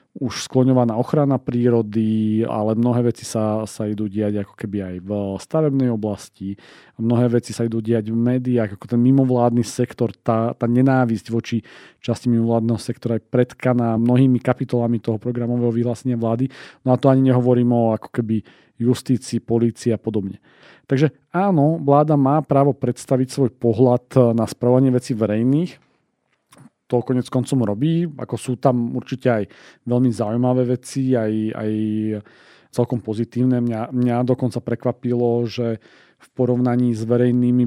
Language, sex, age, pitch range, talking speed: Slovak, male, 40-59, 110-125 Hz, 145 wpm